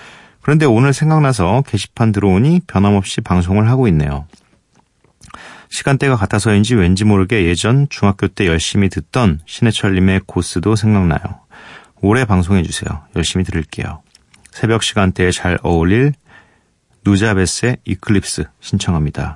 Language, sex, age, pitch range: Korean, male, 40-59, 85-110 Hz